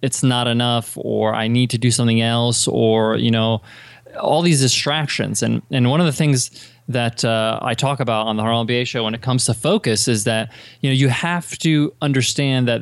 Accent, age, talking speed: American, 20-39, 215 wpm